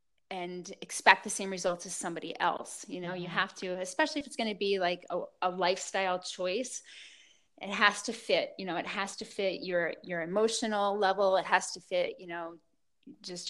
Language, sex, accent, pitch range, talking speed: English, female, American, 185-235 Hz, 200 wpm